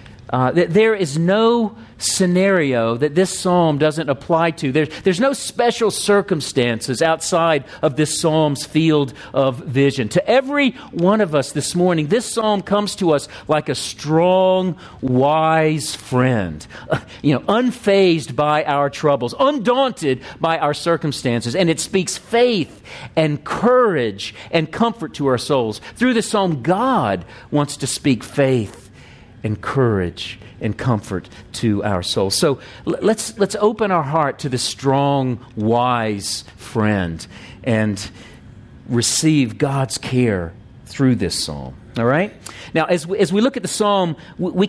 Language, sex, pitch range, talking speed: English, male, 120-180 Hz, 145 wpm